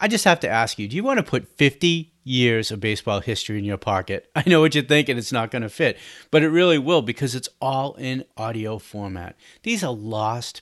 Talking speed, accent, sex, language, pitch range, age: 235 wpm, American, male, English, 105-145 Hz, 40-59